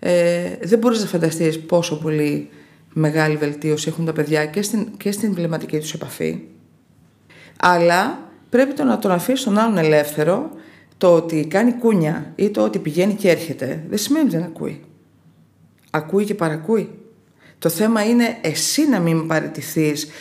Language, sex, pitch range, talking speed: Greek, female, 160-205 Hz, 150 wpm